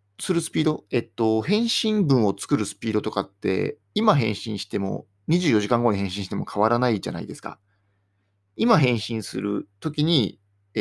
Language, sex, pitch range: Japanese, male, 100-155 Hz